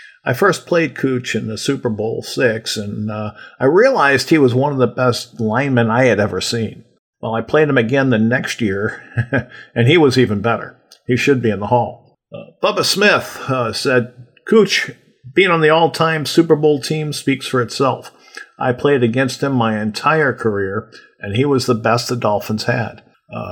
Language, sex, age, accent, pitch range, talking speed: English, male, 50-69, American, 110-135 Hz, 190 wpm